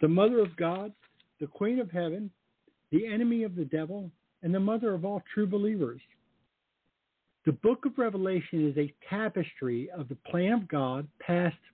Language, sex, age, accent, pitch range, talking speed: English, male, 60-79, American, 150-200 Hz, 170 wpm